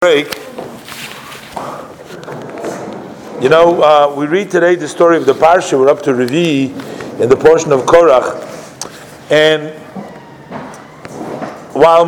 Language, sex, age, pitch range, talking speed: English, male, 50-69, 150-175 Hz, 110 wpm